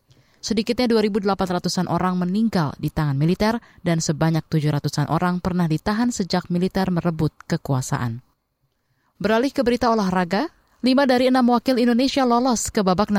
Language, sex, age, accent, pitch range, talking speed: Indonesian, female, 20-39, native, 160-205 Hz, 130 wpm